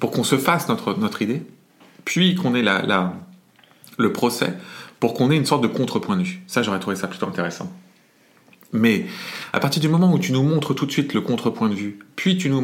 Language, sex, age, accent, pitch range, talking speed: French, male, 40-59, French, 100-145 Hz, 230 wpm